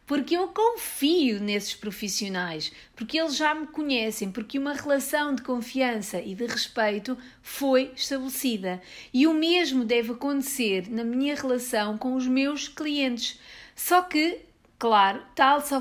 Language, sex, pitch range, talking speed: English, female, 215-275 Hz, 140 wpm